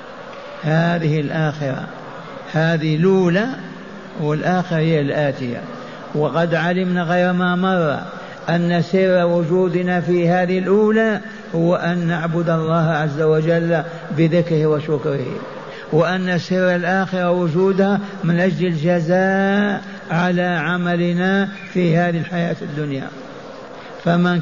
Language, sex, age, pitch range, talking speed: Arabic, male, 60-79, 165-190 Hz, 100 wpm